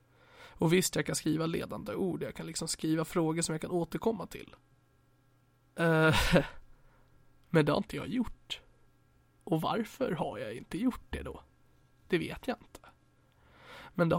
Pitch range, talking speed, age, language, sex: 135-175 Hz, 155 wpm, 20-39, Swedish, male